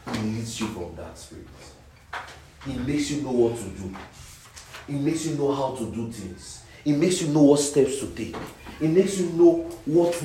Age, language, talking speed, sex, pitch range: 40-59, English, 200 wpm, male, 110-170 Hz